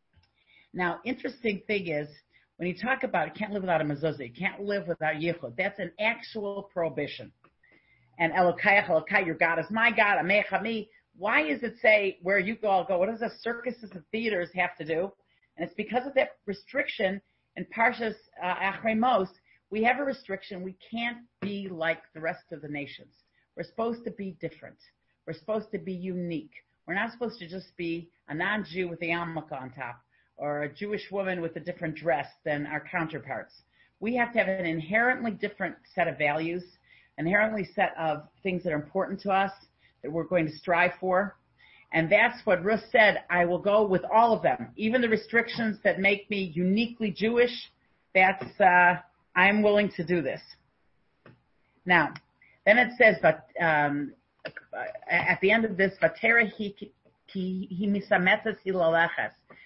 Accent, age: American, 50-69